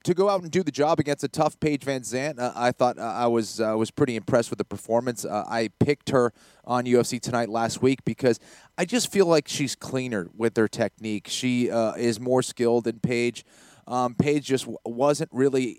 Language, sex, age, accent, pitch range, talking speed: English, male, 30-49, American, 115-150 Hz, 220 wpm